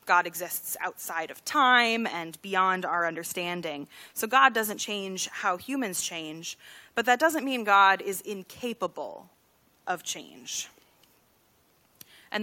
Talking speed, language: 125 wpm, English